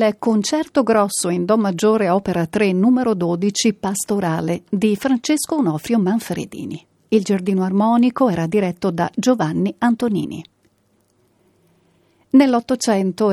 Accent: native